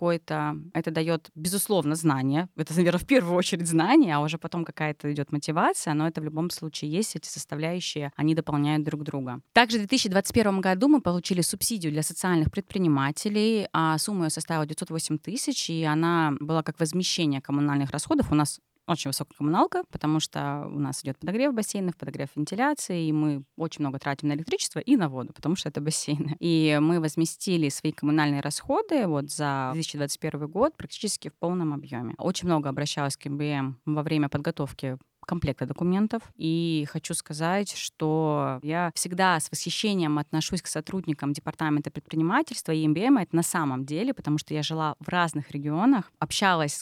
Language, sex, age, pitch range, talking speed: Russian, female, 20-39, 150-175 Hz, 170 wpm